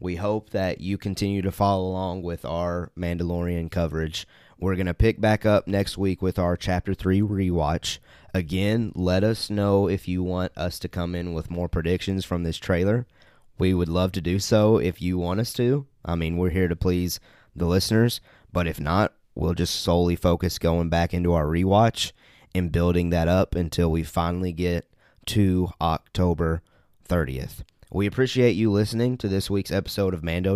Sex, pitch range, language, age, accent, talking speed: male, 85-100 Hz, English, 20-39, American, 185 wpm